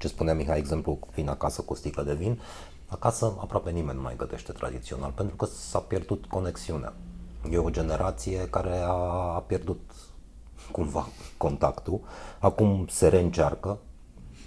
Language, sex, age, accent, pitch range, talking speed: Romanian, male, 30-49, native, 70-95 Hz, 135 wpm